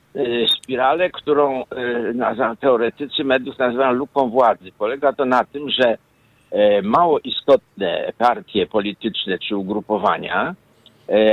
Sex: male